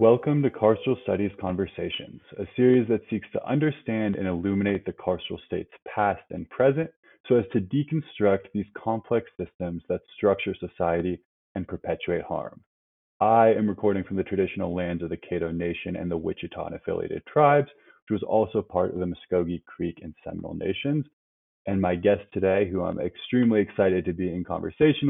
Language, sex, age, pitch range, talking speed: English, male, 20-39, 90-125 Hz, 165 wpm